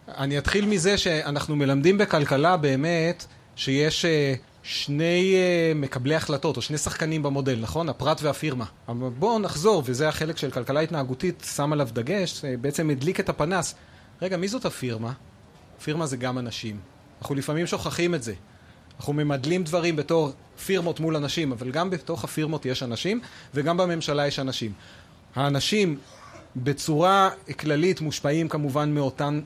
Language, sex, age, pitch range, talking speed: Hebrew, male, 30-49, 135-170 Hz, 140 wpm